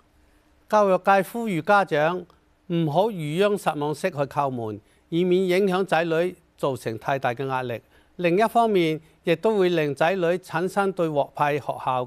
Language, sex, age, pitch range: Chinese, male, 50-69, 140-190 Hz